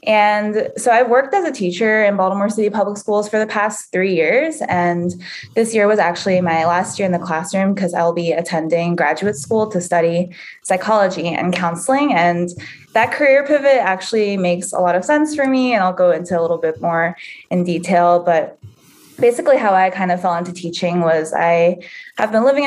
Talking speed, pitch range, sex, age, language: 200 wpm, 175-230 Hz, female, 20-39, English